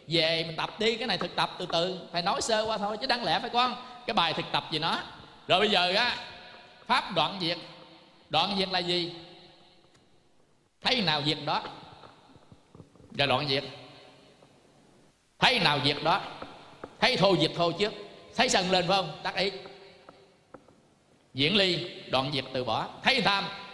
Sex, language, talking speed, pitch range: male, Vietnamese, 170 wpm, 155-215 Hz